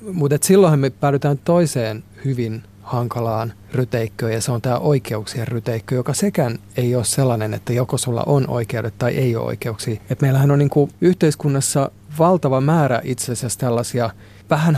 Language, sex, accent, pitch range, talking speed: Finnish, male, native, 115-140 Hz, 160 wpm